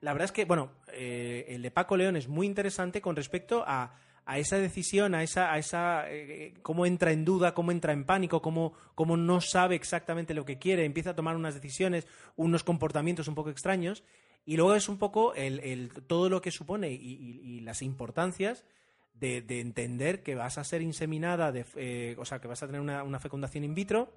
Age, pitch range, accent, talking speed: 30-49, 135-180 Hz, Spanish, 205 wpm